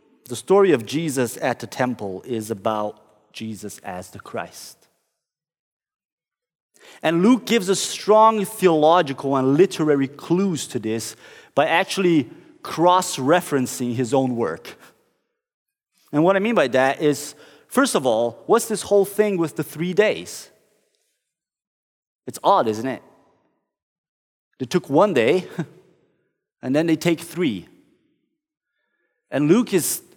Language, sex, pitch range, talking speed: English, male, 135-210 Hz, 125 wpm